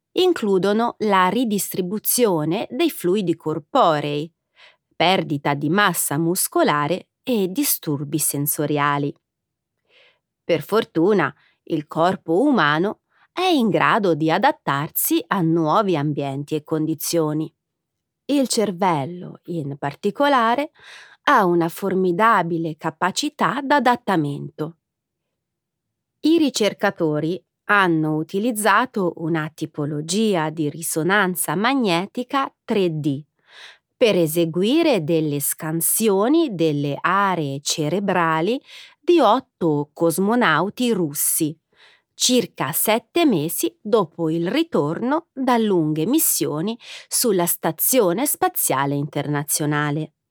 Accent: native